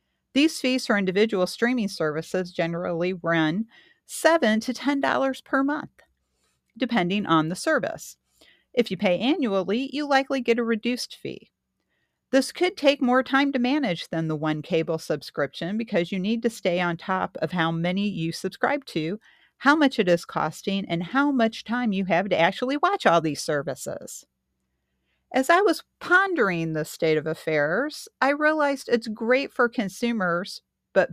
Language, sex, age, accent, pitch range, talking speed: English, female, 40-59, American, 165-245 Hz, 160 wpm